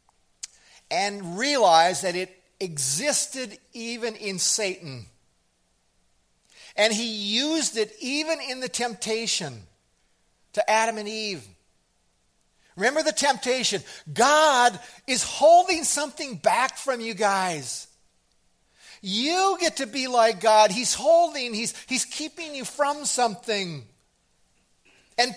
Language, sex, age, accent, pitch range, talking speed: English, male, 50-69, American, 185-265 Hz, 110 wpm